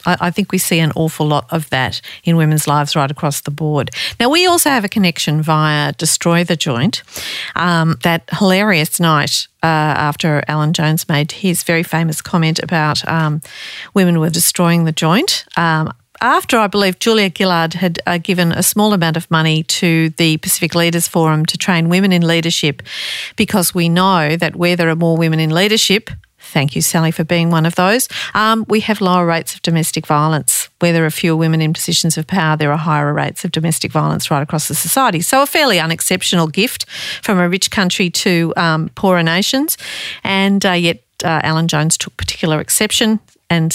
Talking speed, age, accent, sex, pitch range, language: 190 wpm, 50-69, Australian, female, 155-185 Hz, English